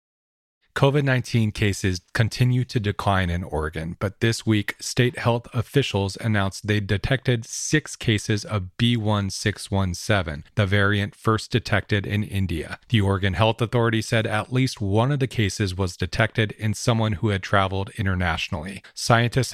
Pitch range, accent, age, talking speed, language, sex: 95-115 Hz, American, 40-59, 140 wpm, English, male